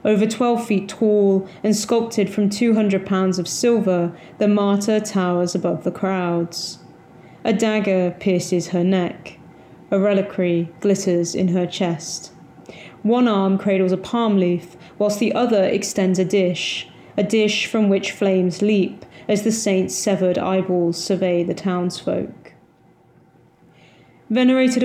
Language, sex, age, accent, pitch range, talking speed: English, female, 20-39, British, 180-215 Hz, 135 wpm